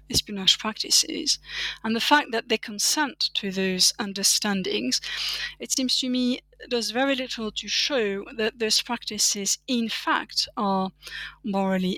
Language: English